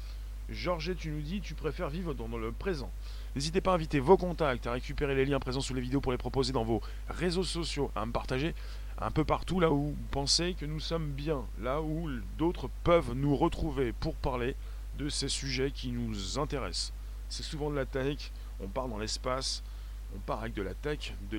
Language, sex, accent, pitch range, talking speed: French, male, French, 105-145 Hz, 210 wpm